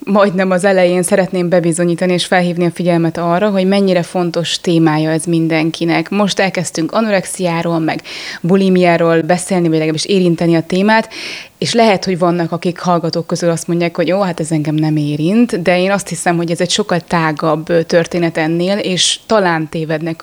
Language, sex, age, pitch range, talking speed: Hungarian, female, 20-39, 170-200 Hz, 170 wpm